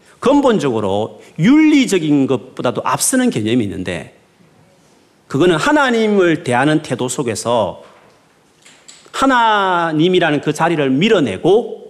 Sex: male